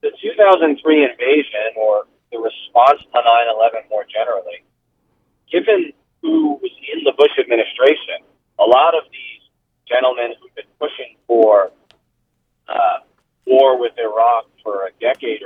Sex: male